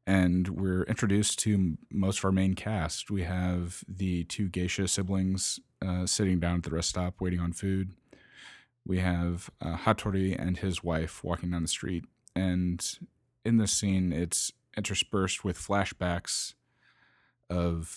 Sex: male